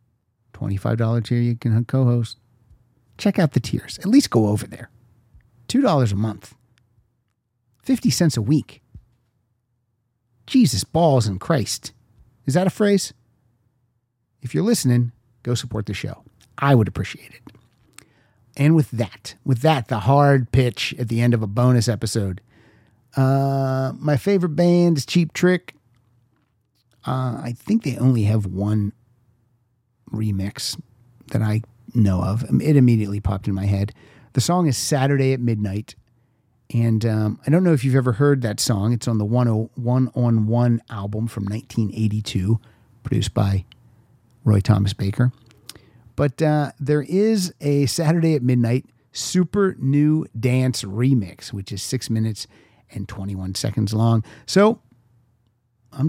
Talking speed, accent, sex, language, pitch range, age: 140 wpm, American, male, English, 110-135 Hz, 50-69